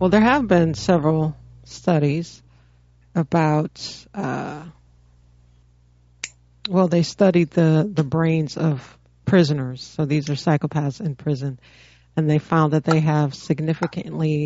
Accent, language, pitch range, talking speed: American, English, 145-170 Hz, 120 wpm